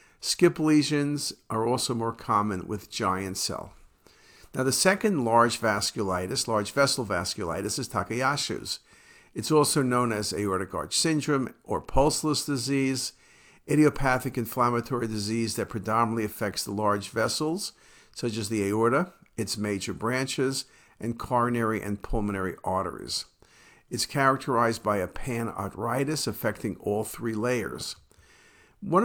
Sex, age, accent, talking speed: male, 50-69, American, 125 wpm